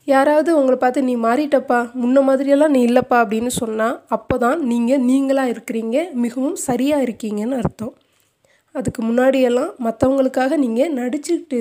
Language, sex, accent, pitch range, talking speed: Tamil, female, native, 240-275 Hz, 125 wpm